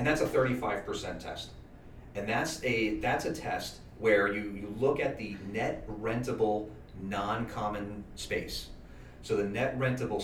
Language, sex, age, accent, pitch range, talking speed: English, male, 40-59, American, 90-125 Hz, 145 wpm